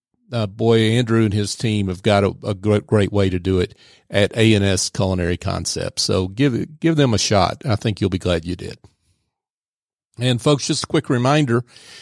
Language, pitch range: English, 105-130 Hz